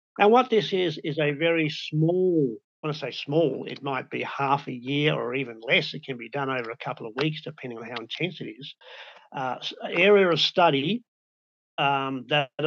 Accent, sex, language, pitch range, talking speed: Australian, male, English, 125-155 Hz, 205 wpm